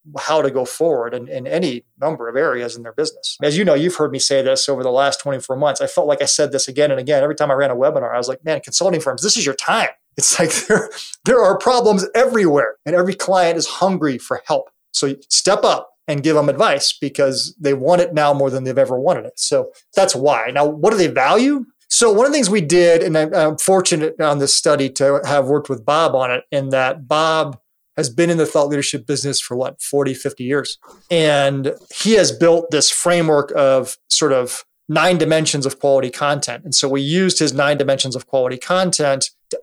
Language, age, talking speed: English, 30-49, 230 wpm